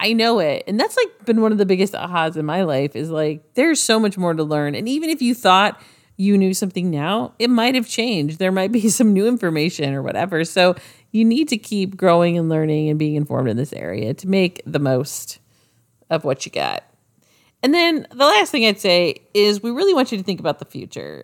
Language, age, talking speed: English, 40-59, 235 wpm